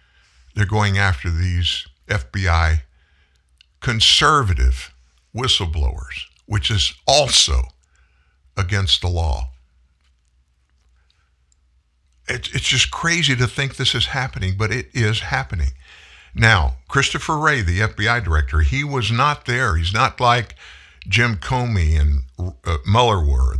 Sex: male